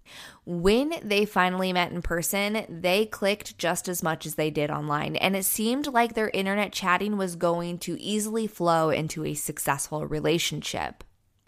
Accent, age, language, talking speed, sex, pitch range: American, 20-39, English, 160 wpm, female, 160-205 Hz